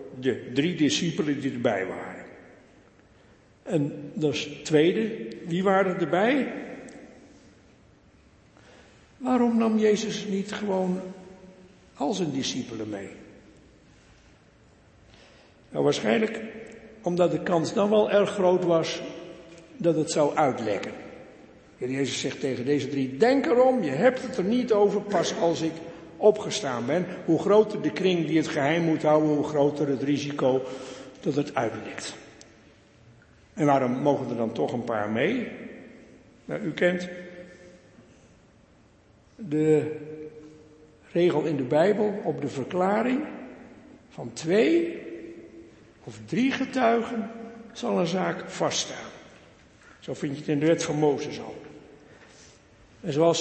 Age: 60-79